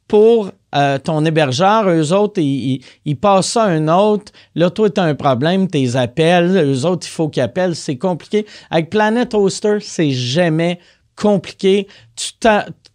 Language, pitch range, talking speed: French, 150-205 Hz, 175 wpm